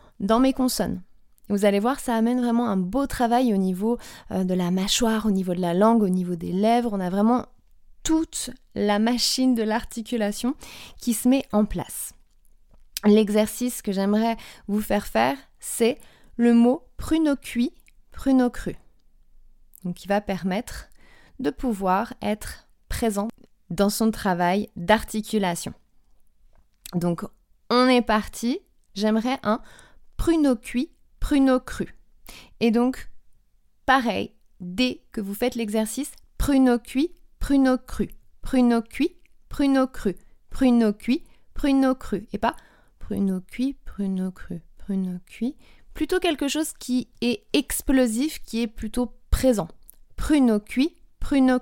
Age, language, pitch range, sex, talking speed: 20-39, French, 205-260 Hz, female, 135 wpm